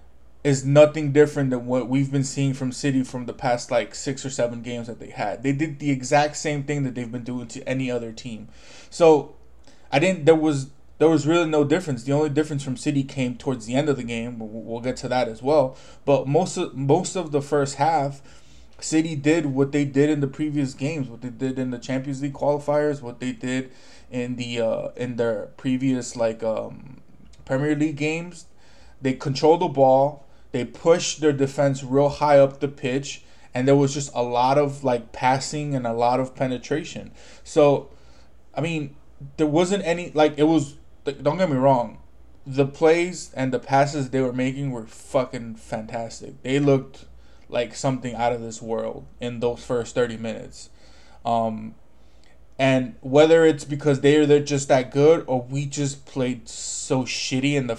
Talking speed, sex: 195 wpm, male